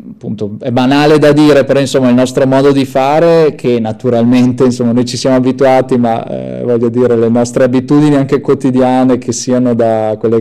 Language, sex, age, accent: Italian, male, 20-39, native